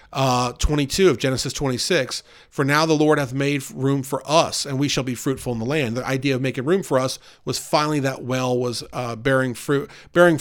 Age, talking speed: 40-59, 220 wpm